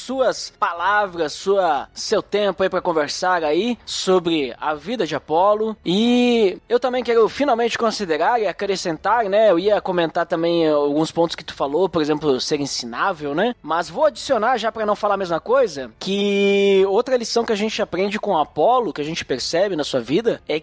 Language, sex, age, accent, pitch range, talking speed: Portuguese, male, 20-39, Brazilian, 165-240 Hz, 185 wpm